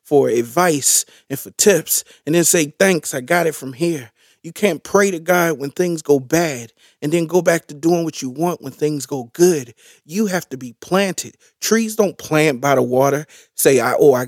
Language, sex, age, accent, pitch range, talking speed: English, male, 40-59, American, 140-200 Hz, 210 wpm